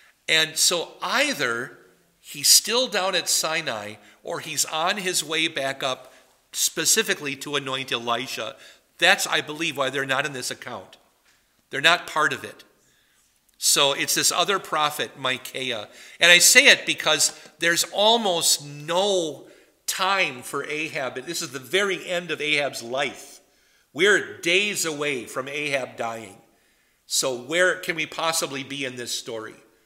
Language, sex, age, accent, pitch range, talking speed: English, male, 50-69, American, 135-180 Hz, 145 wpm